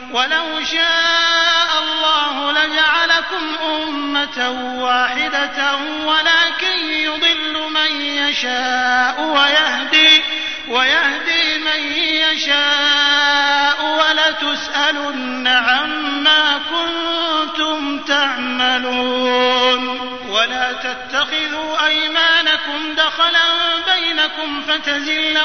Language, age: Arabic, 30-49